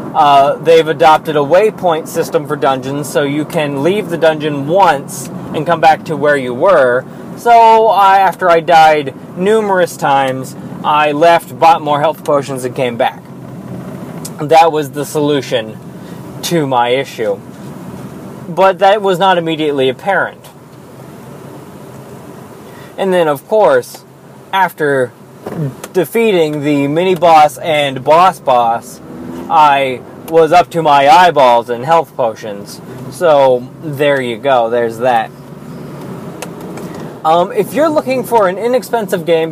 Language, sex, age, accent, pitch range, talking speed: English, male, 20-39, American, 145-190 Hz, 125 wpm